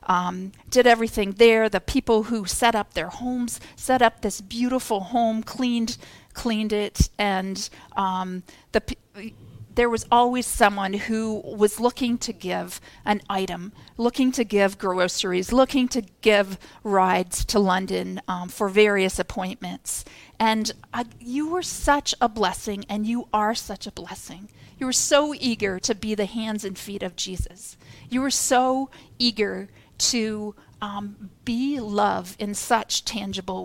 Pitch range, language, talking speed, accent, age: 195-240 Hz, English, 150 wpm, American, 40-59